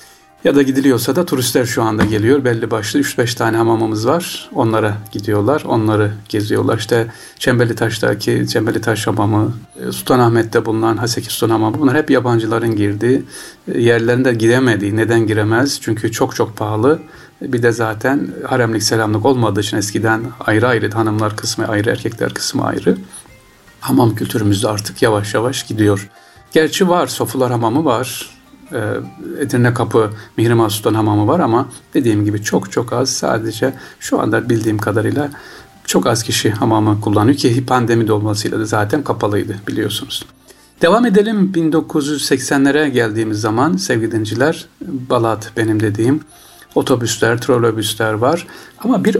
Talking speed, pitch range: 140 wpm, 110-130 Hz